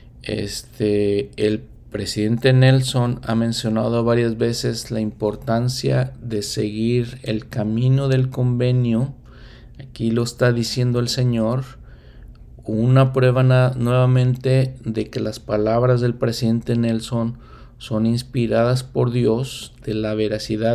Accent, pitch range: Mexican, 110-125 Hz